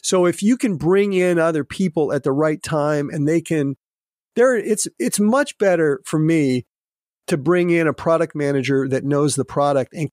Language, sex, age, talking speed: English, male, 40-59, 195 wpm